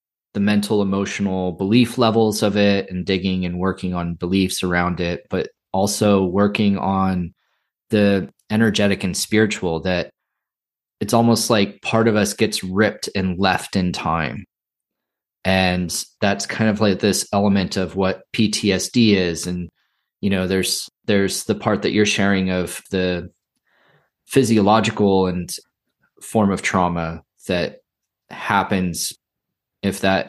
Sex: male